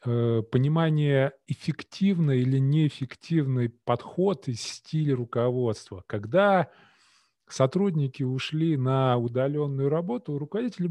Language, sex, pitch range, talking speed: Russian, male, 125-165 Hz, 90 wpm